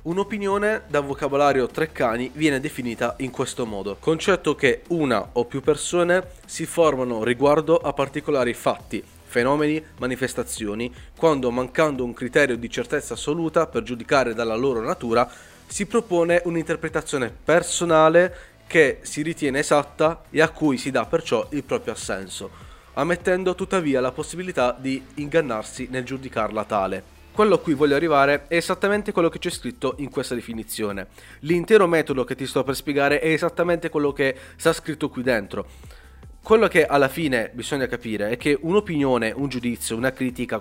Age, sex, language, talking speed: 30-49, male, Italian, 150 wpm